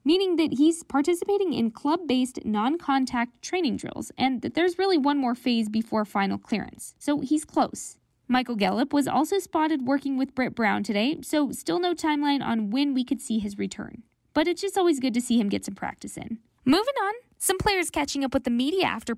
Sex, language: female, English